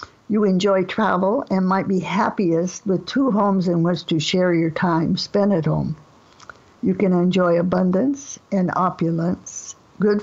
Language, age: English, 60-79